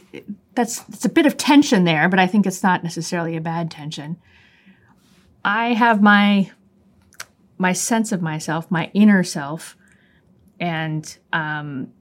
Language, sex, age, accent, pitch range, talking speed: English, female, 30-49, American, 160-195 Hz, 140 wpm